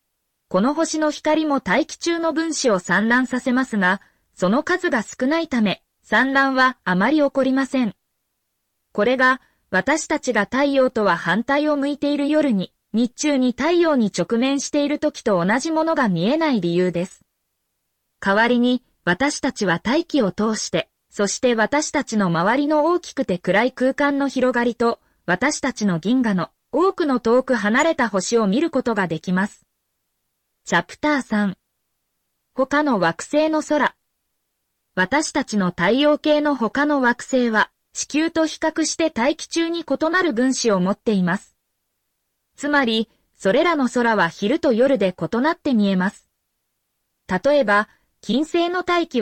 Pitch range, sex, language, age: 210-295 Hz, female, Japanese, 20-39